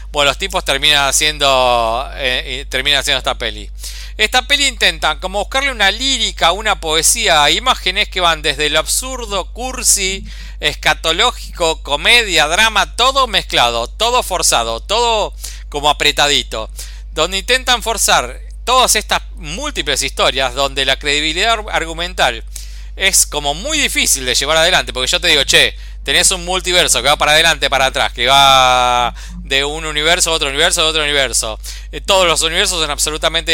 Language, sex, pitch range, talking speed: Spanish, male, 140-215 Hz, 145 wpm